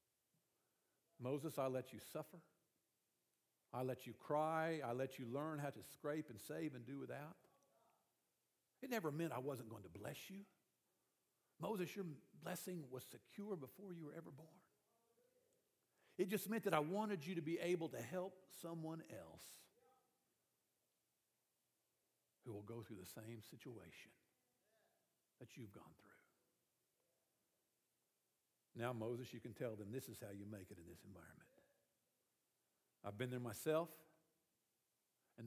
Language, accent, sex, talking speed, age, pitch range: English, American, male, 145 wpm, 50-69, 115-170 Hz